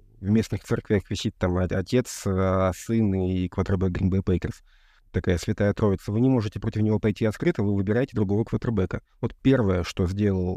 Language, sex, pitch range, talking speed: Russian, male, 100-125 Hz, 155 wpm